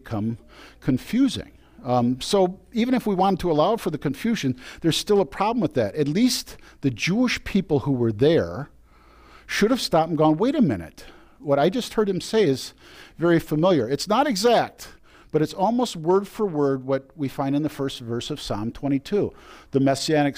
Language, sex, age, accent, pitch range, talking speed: English, male, 50-69, American, 125-185 Hz, 185 wpm